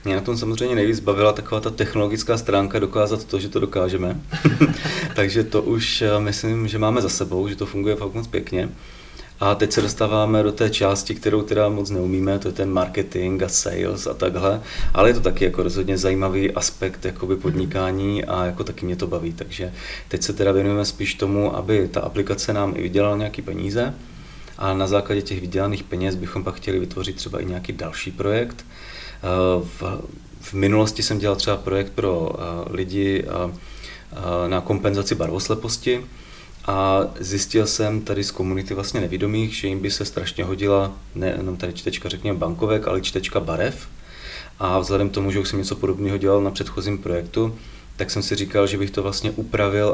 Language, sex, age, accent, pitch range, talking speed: Czech, male, 30-49, native, 95-105 Hz, 180 wpm